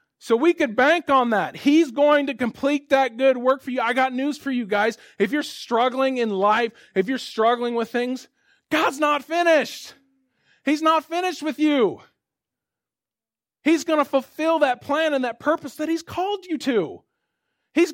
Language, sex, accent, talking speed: English, male, American, 180 wpm